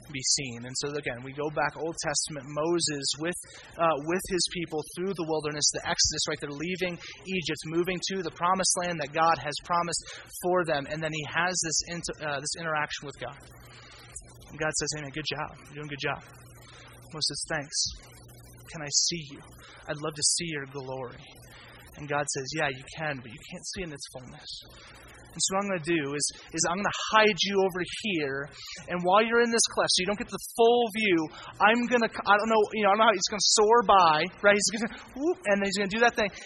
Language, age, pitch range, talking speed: English, 30-49, 145-200 Hz, 235 wpm